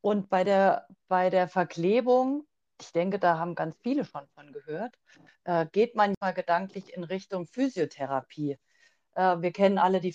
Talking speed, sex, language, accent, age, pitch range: 140 wpm, female, German, German, 40-59, 185-235 Hz